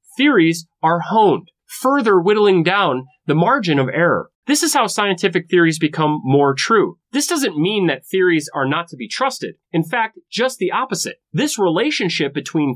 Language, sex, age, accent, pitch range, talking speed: English, male, 30-49, American, 150-225 Hz, 170 wpm